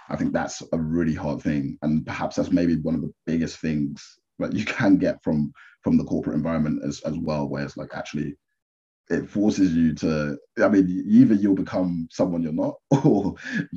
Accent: British